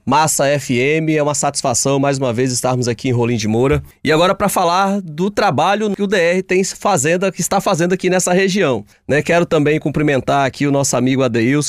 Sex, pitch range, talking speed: male, 140-185 Hz, 205 wpm